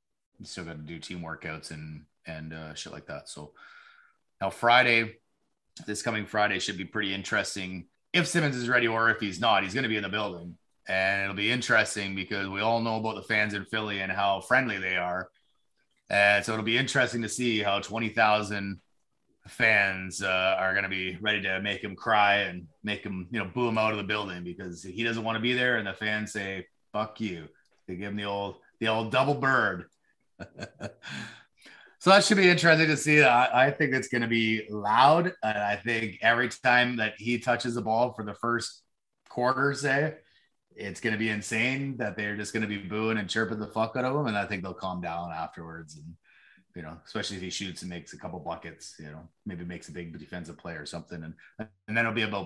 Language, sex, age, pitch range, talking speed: English, male, 30-49, 95-115 Hz, 220 wpm